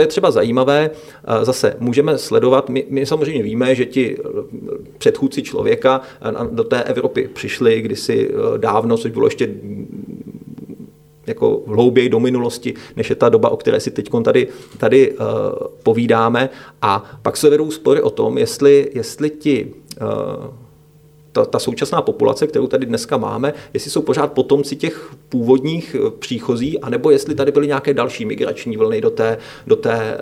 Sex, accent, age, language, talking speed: male, native, 30-49, Czech, 145 wpm